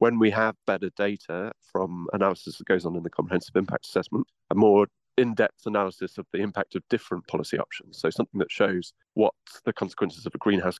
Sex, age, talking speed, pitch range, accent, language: male, 30-49, 200 wpm, 90-100 Hz, British, English